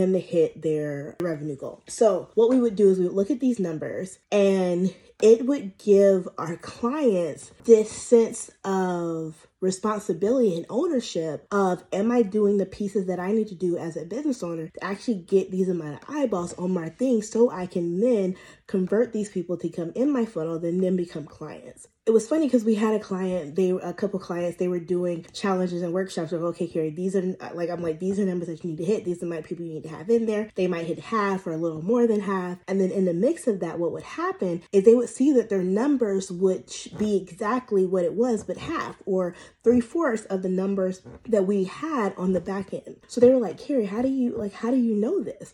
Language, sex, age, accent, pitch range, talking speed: English, female, 20-39, American, 175-220 Hz, 230 wpm